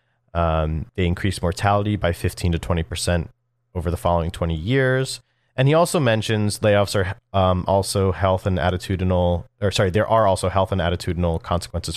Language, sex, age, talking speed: English, male, 30-49, 165 wpm